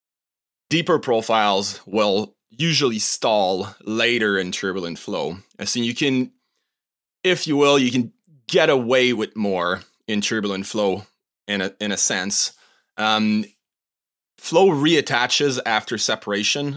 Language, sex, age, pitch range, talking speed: English, male, 20-39, 100-125 Hz, 120 wpm